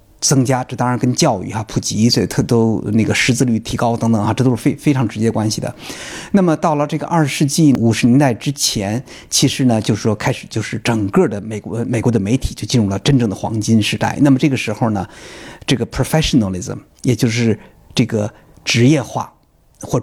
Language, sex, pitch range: Chinese, male, 110-140 Hz